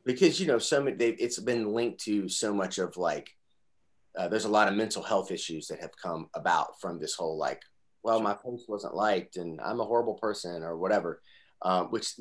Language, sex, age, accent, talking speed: English, male, 30-49, American, 210 wpm